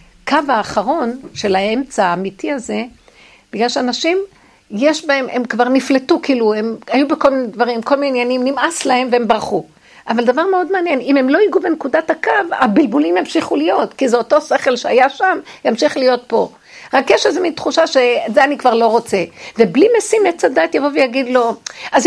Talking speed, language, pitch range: 180 wpm, Hebrew, 225-310 Hz